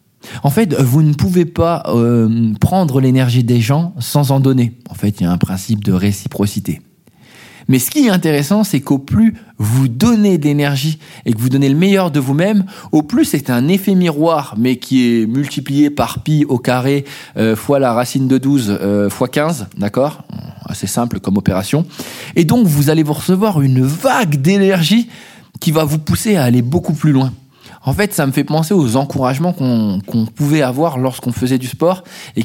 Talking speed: 190 wpm